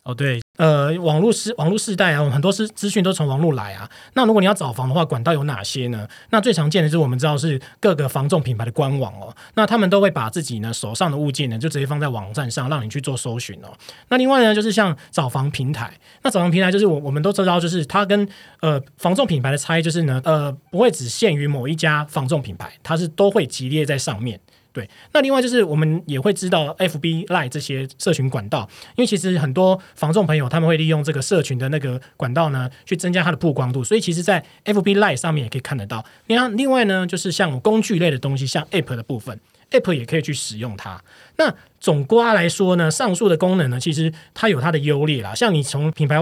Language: Chinese